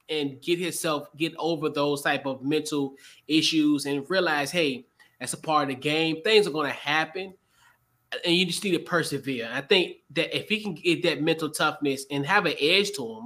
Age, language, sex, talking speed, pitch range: 20-39, English, male, 205 wpm, 145-195 Hz